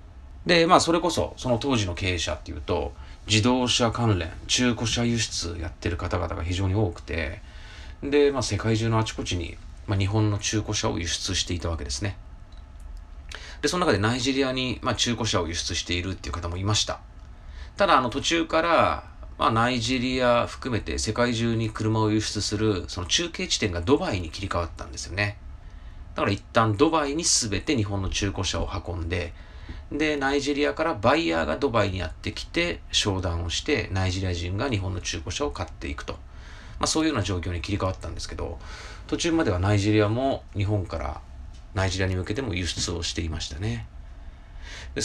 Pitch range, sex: 85-110 Hz, male